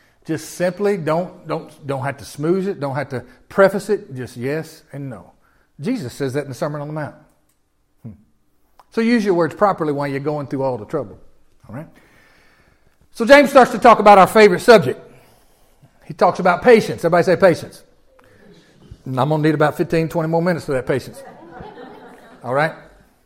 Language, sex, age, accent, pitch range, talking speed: English, male, 40-59, American, 150-220 Hz, 175 wpm